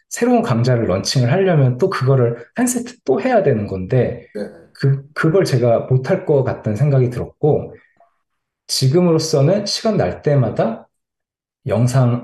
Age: 20-39